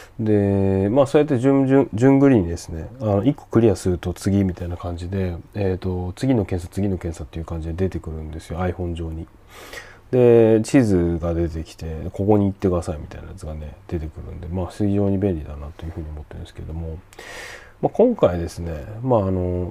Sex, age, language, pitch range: male, 30-49, Japanese, 85-115 Hz